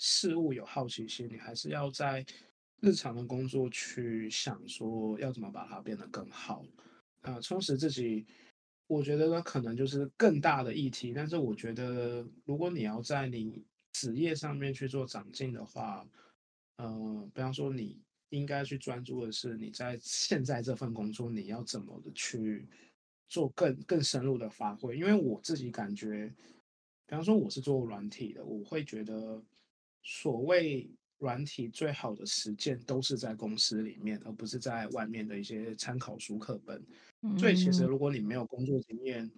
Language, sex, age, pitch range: Chinese, male, 20-39, 110-140 Hz